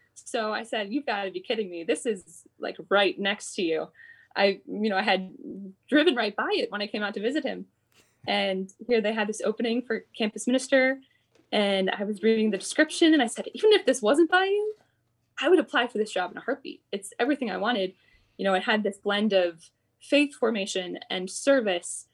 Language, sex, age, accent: English, female, 20-39, American